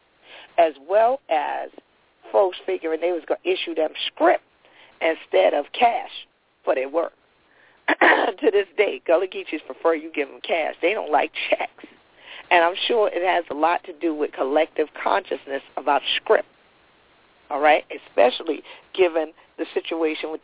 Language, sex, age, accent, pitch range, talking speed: English, female, 50-69, American, 155-195 Hz, 155 wpm